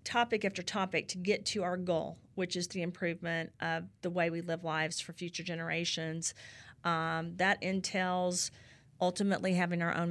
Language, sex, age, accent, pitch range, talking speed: English, female, 40-59, American, 160-180 Hz, 165 wpm